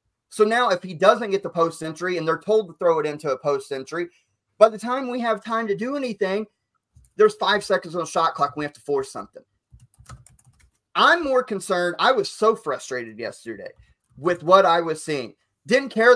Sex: male